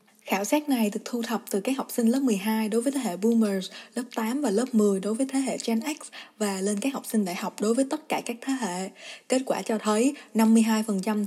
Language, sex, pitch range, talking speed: Vietnamese, female, 205-235 Hz, 250 wpm